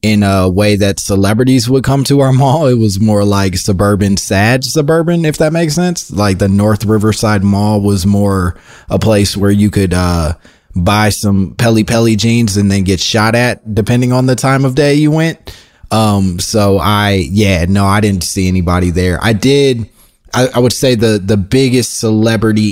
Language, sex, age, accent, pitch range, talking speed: English, male, 20-39, American, 95-115 Hz, 190 wpm